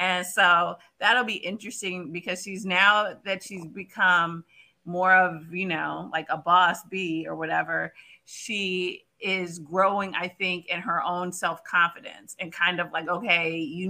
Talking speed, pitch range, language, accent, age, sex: 155 wpm, 175-200 Hz, English, American, 30-49, female